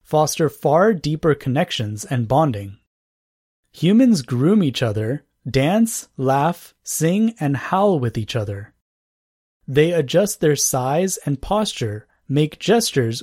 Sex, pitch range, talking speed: male, 115-170 Hz, 120 wpm